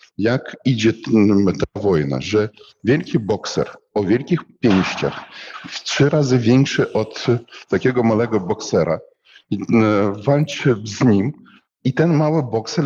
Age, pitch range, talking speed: 50-69, 110-140 Hz, 115 wpm